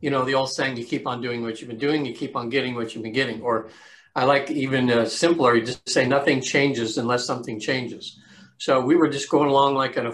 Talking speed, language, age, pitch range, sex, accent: 260 wpm, English, 50-69, 120-145 Hz, male, American